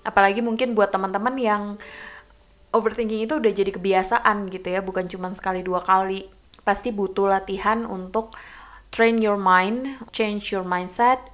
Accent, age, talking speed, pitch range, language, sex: native, 20-39, 145 wpm, 180-220 Hz, Indonesian, female